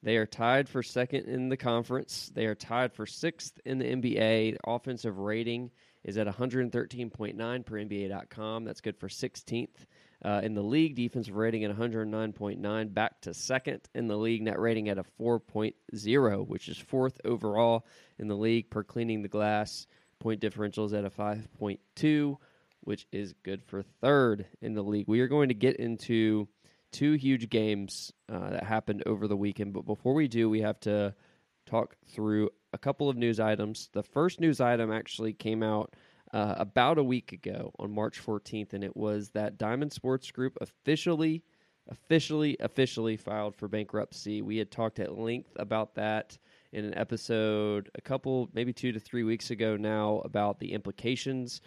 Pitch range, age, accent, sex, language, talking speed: 105-125 Hz, 20-39, American, male, English, 175 wpm